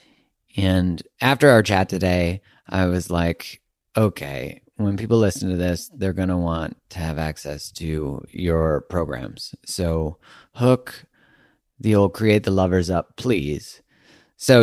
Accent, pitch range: American, 80-100 Hz